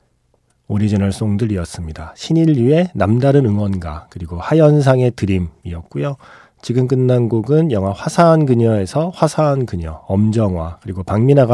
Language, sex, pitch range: Korean, male, 95-135 Hz